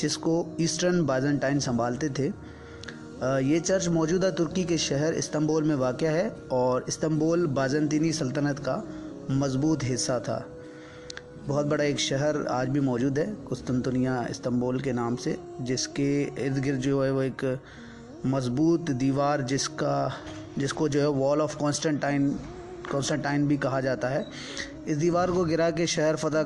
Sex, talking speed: male, 155 wpm